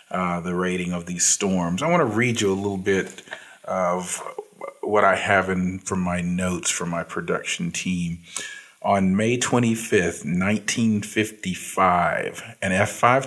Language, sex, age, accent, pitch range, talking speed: English, male, 40-59, American, 90-110 Hz, 135 wpm